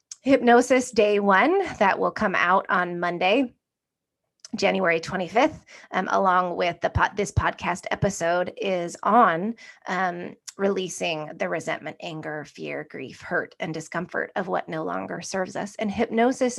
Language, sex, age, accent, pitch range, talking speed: English, female, 20-39, American, 175-215 Hz, 140 wpm